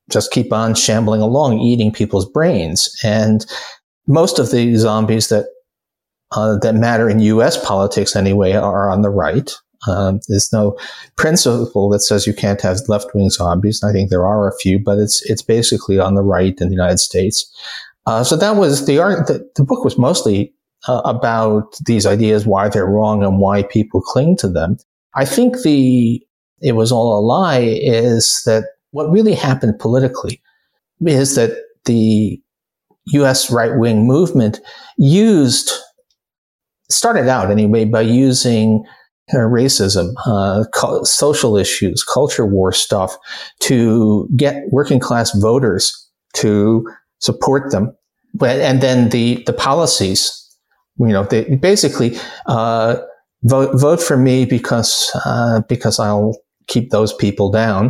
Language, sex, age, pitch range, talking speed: English, male, 50-69, 105-130 Hz, 150 wpm